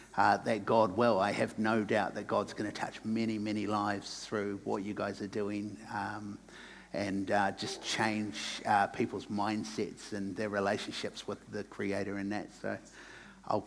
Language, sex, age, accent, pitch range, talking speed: English, male, 50-69, Australian, 100-120 Hz, 175 wpm